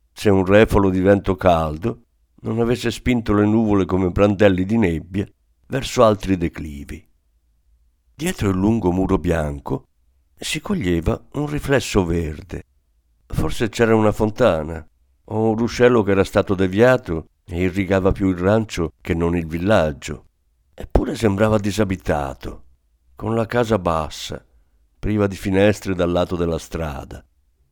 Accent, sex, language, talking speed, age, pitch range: native, male, Italian, 135 wpm, 50-69, 75-110 Hz